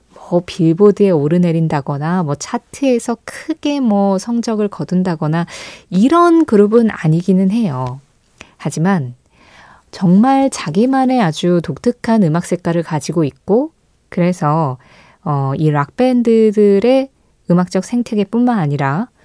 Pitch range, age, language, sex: 165-240 Hz, 20-39, Korean, female